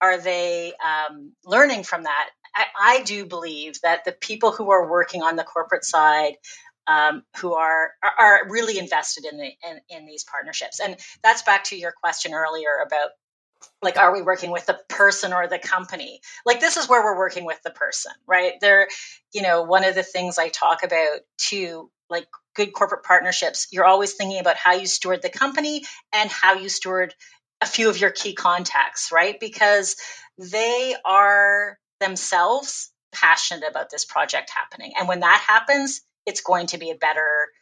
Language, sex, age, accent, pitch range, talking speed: English, female, 30-49, American, 165-205 Hz, 180 wpm